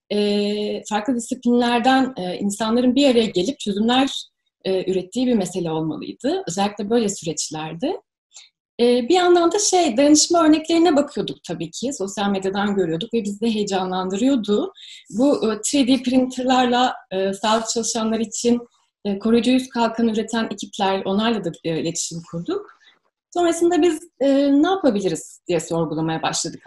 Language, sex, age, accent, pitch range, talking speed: Turkish, female, 30-49, native, 200-285 Hz, 115 wpm